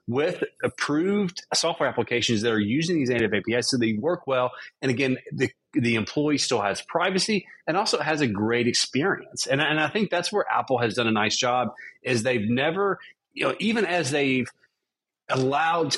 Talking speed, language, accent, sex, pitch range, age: 185 wpm, English, American, male, 105-145 Hz, 30-49